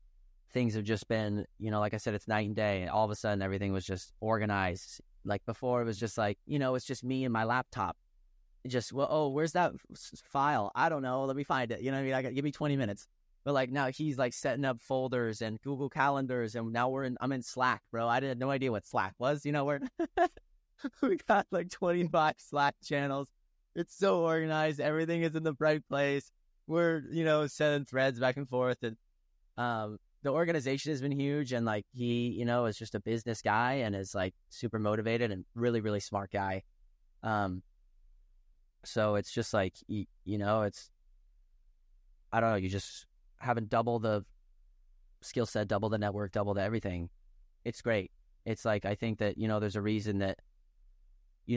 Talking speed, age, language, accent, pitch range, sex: 210 wpm, 20-39, English, American, 100-135 Hz, male